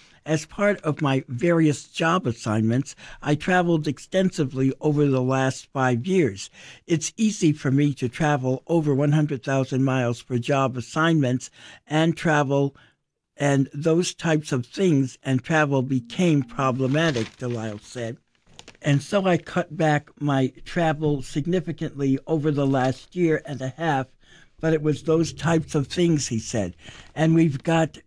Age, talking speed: 60-79, 145 wpm